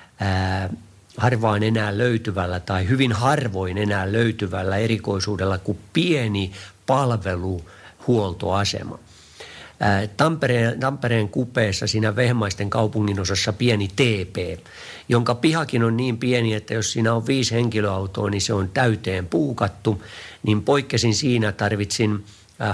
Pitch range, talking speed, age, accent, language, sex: 100-115 Hz, 115 wpm, 50-69, native, Finnish, male